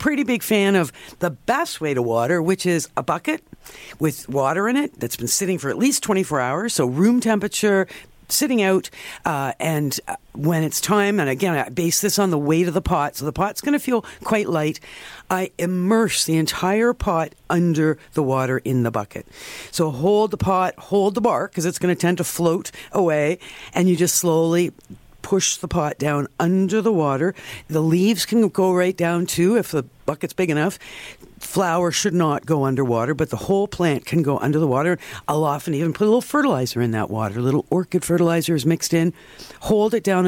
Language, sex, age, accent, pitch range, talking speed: English, female, 50-69, American, 140-195 Hz, 205 wpm